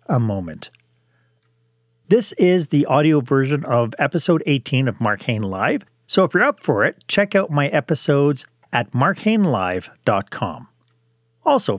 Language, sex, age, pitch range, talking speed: English, male, 40-59, 115-165 Hz, 135 wpm